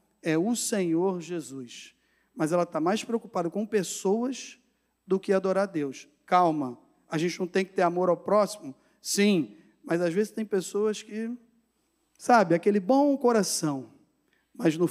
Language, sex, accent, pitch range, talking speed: Portuguese, male, Brazilian, 175-245 Hz, 155 wpm